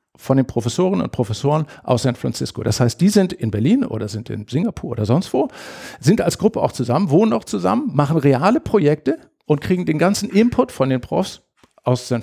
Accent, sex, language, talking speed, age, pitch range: German, male, German, 205 wpm, 50-69, 115-165 Hz